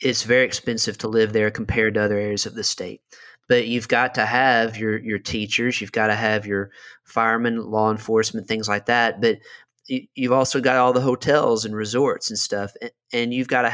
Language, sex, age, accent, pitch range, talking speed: English, male, 30-49, American, 110-125 Hz, 205 wpm